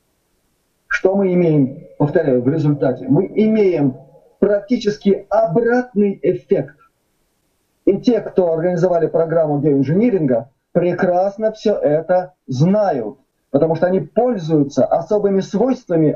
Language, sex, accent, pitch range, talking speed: Russian, male, native, 160-225 Hz, 100 wpm